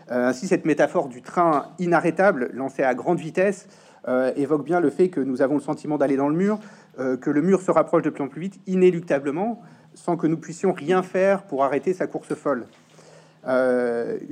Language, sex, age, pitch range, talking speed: French, male, 30-49, 135-185 Hz, 200 wpm